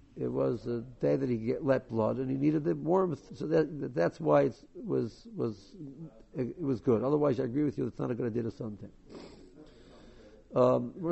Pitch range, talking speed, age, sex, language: 120-155 Hz, 180 wpm, 60-79, male, English